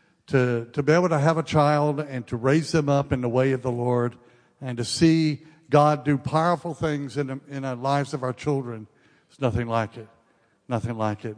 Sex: male